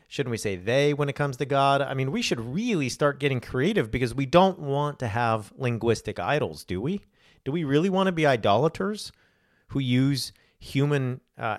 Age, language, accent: 40-59, English, American